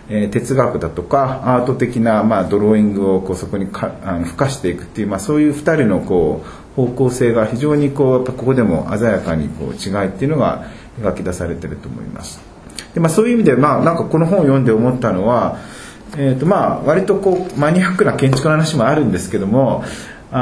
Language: Japanese